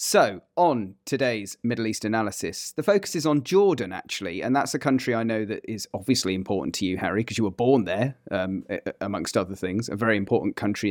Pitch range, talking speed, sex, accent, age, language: 105-140 Hz, 210 wpm, male, British, 40-59, English